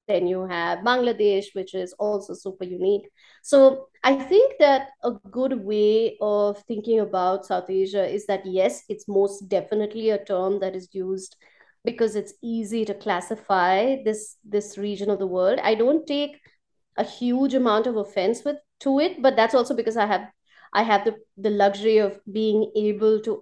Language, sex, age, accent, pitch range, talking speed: English, female, 30-49, Indian, 195-235 Hz, 175 wpm